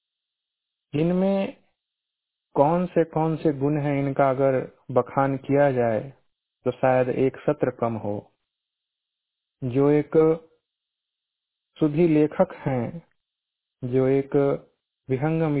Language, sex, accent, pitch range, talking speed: Hindi, male, native, 125-155 Hz, 95 wpm